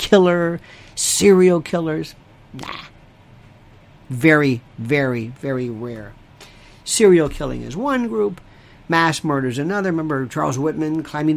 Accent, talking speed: American, 110 wpm